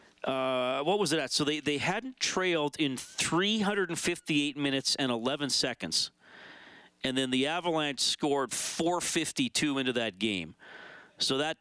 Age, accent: 40-59, American